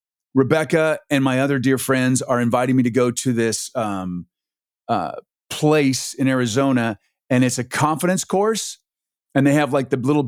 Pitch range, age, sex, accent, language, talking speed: 125-150 Hz, 30-49, male, American, English, 170 wpm